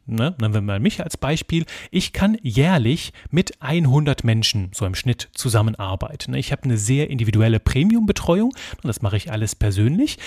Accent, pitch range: German, 110-150 Hz